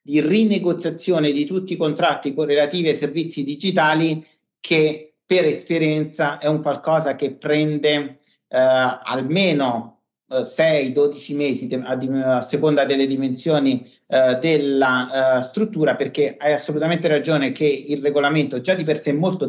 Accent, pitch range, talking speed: native, 130-155 Hz, 145 wpm